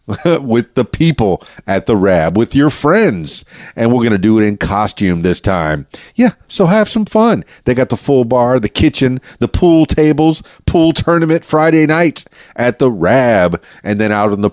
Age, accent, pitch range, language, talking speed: 40-59, American, 100-155 Hz, English, 185 wpm